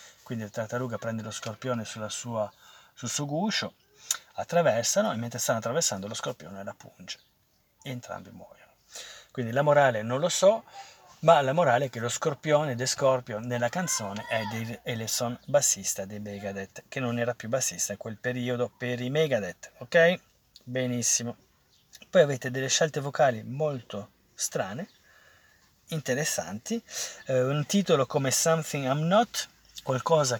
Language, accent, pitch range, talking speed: Italian, native, 115-150 Hz, 150 wpm